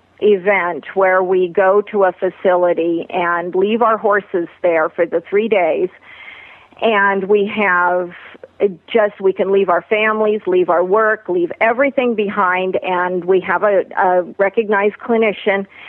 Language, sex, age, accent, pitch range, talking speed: English, female, 50-69, American, 180-215 Hz, 145 wpm